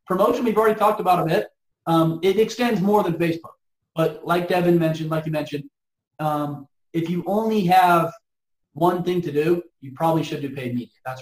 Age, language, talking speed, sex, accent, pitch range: 30-49, English, 195 wpm, male, American, 150-205 Hz